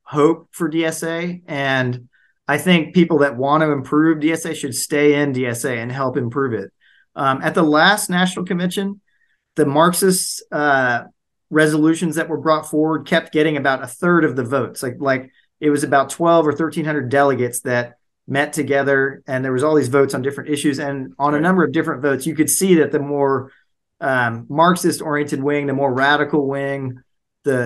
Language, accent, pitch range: English, American, 135-165 Hz